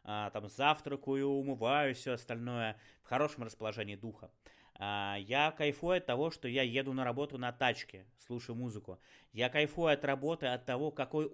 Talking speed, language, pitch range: 155 wpm, Russian, 115-145 Hz